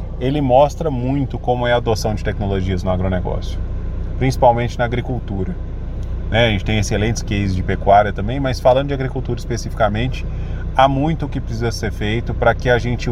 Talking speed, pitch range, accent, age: 175 wpm, 95-120 Hz, Brazilian, 20-39